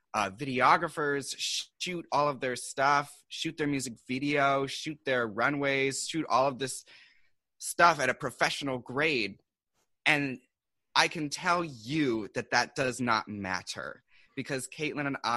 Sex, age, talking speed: male, 30-49, 140 wpm